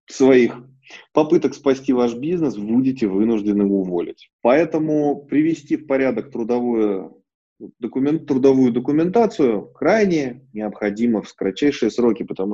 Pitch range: 105-155 Hz